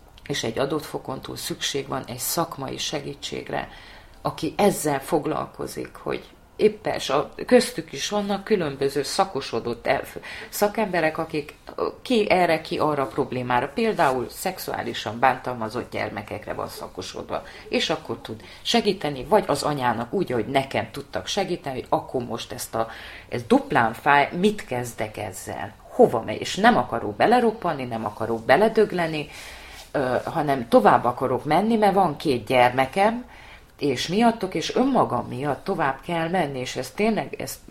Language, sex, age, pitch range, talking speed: Hungarian, female, 30-49, 130-195 Hz, 130 wpm